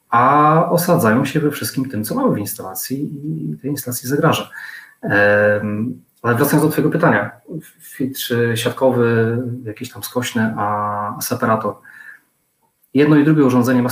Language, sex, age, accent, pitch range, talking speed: Polish, male, 30-49, native, 110-130 Hz, 135 wpm